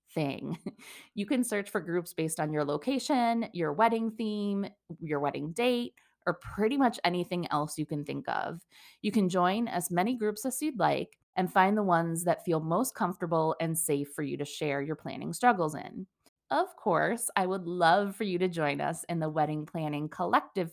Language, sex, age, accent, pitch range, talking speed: English, female, 20-39, American, 160-215 Hz, 190 wpm